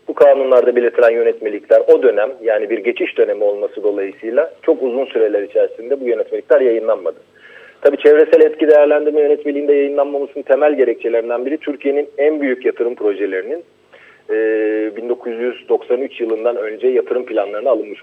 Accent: native